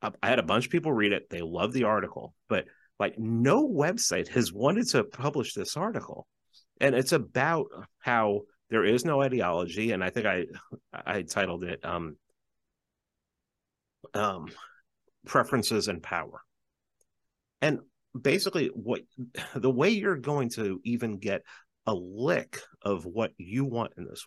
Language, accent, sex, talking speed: English, American, male, 150 wpm